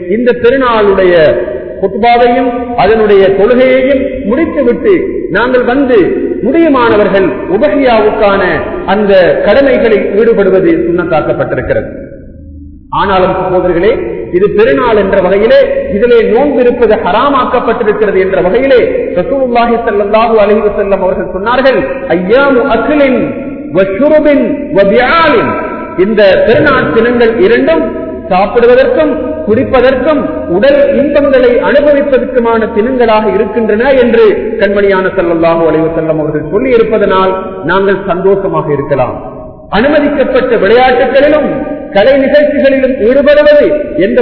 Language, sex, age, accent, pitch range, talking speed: Tamil, male, 50-69, native, 195-285 Hz, 45 wpm